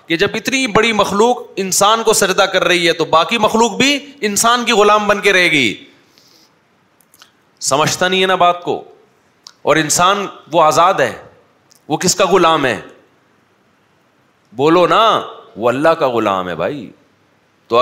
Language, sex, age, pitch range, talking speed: Urdu, male, 30-49, 130-160 Hz, 160 wpm